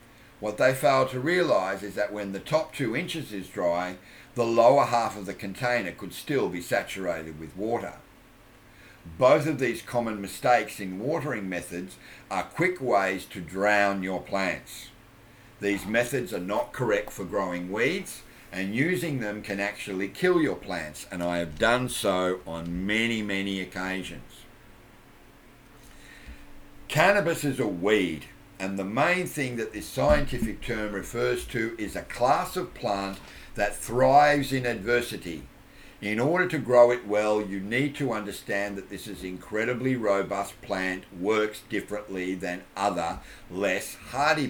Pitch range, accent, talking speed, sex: 95-125 Hz, Australian, 150 wpm, male